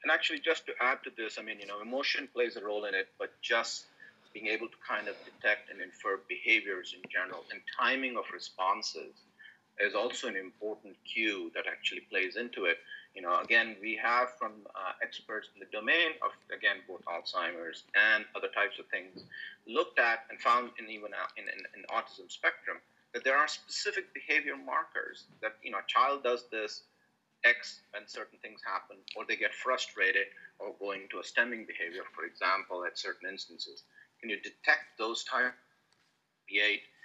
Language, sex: English, male